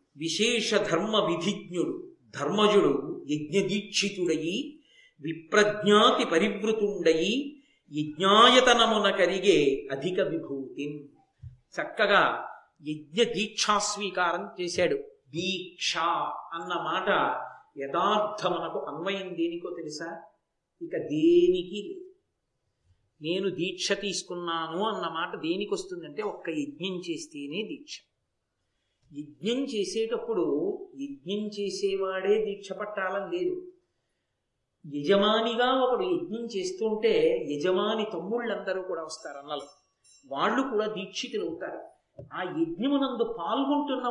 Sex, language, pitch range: male, Telugu, 175-280 Hz